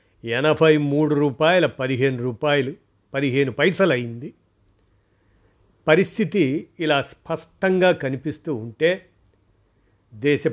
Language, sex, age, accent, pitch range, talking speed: Telugu, male, 50-69, native, 125-160 Hz, 80 wpm